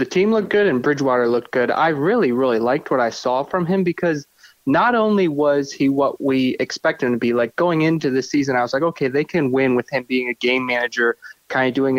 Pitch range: 125-165 Hz